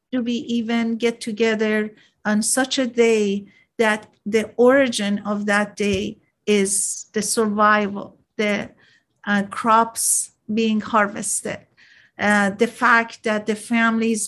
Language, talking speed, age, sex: English, 120 wpm, 50-69, female